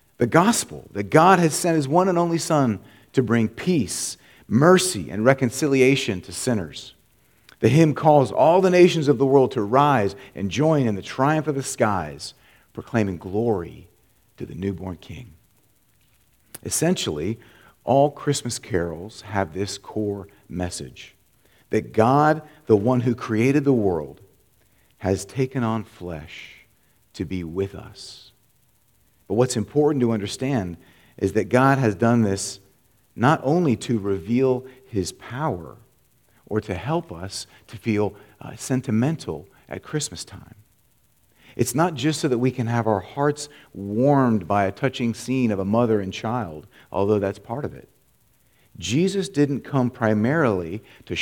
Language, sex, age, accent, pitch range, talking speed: English, male, 40-59, American, 100-135 Hz, 150 wpm